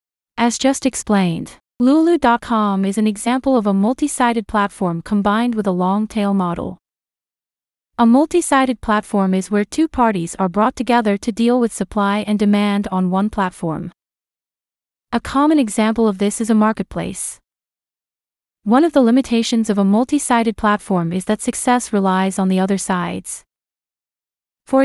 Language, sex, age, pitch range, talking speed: English, female, 30-49, 200-245 Hz, 155 wpm